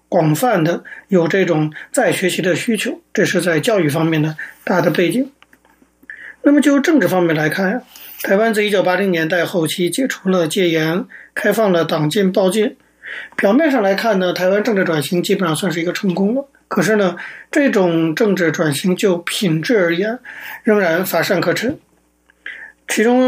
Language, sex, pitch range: Chinese, male, 170-215 Hz